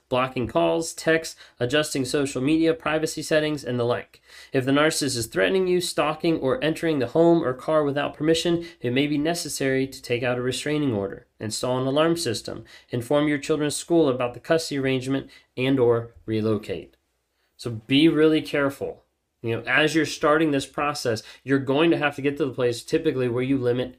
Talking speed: 190 wpm